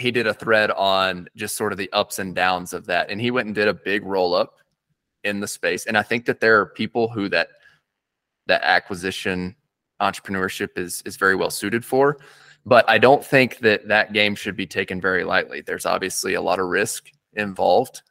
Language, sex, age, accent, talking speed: English, male, 20-39, American, 210 wpm